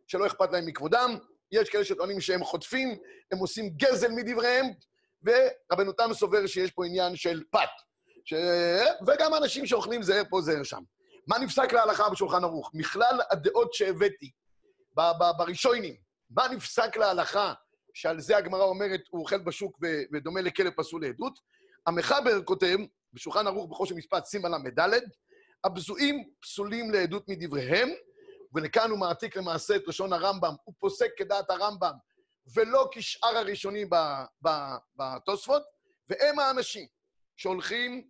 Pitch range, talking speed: 180-265 Hz, 130 wpm